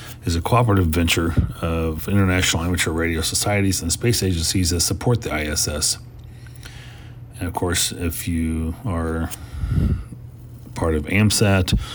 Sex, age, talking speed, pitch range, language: male, 40-59, 125 wpm, 85-120 Hz, English